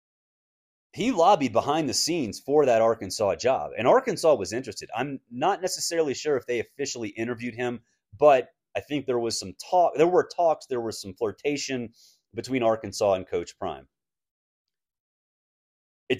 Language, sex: English, male